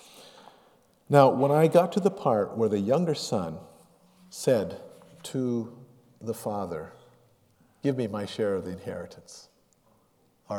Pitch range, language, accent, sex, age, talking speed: 115-180 Hz, English, American, male, 50-69, 130 wpm